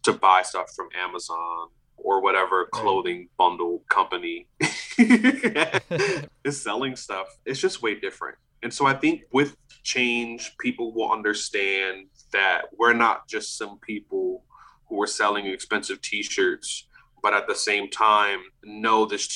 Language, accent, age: English, American, 20-39